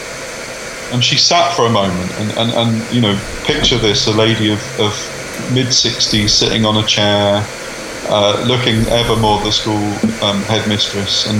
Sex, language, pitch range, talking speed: male, English, 105-120 Hz, 165 wpm